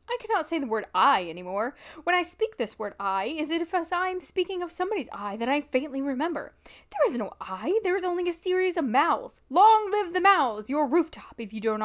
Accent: American